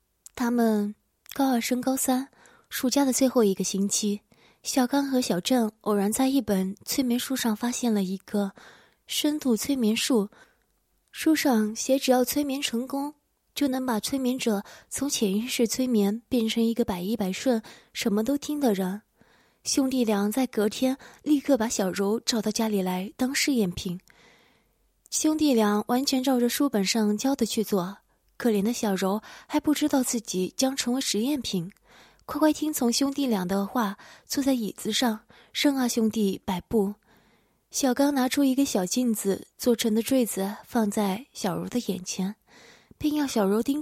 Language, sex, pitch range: Chinese, female, 210-265 Hz